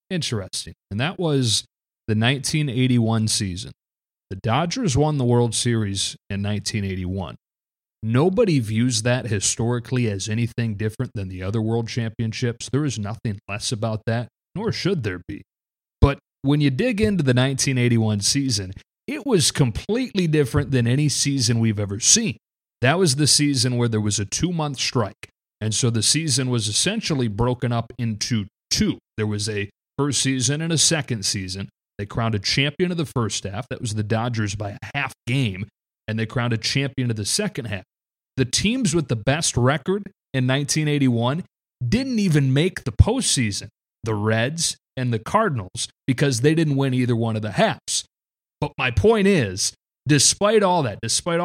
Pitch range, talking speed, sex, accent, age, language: 110-145 Hz, 170 wpm, male, American, 30-49, English